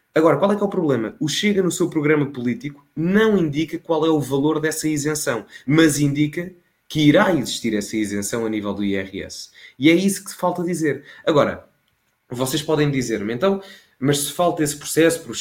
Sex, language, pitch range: male, Portuguese, 120-155 Hz